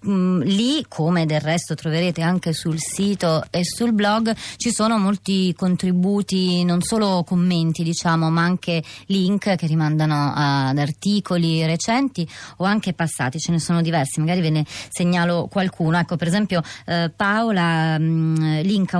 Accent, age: native, 30-49